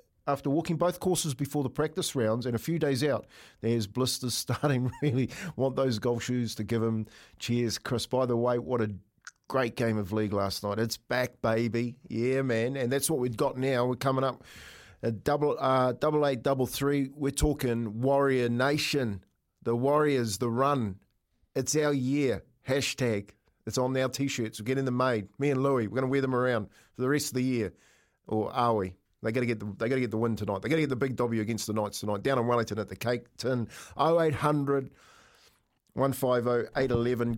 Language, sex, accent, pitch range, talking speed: English, male, Australian, 110-135 Hz, 200 wpm